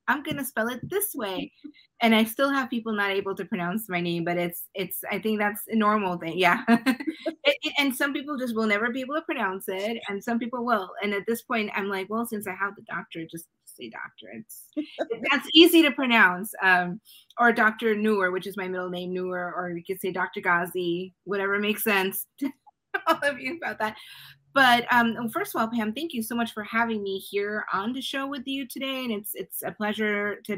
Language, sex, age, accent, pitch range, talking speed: English, female, 30-49, American, 185-245 Hz, 230 wpm